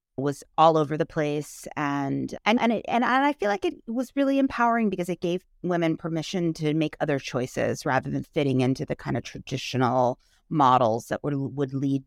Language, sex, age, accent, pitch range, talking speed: English, female, 30-49, American, 145-190 Hz, 200 wpm